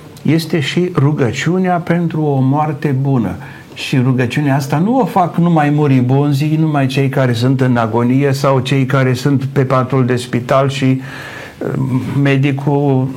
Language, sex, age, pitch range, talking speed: Romanian, male, 60-79, 120-150 Hz, 140 wpm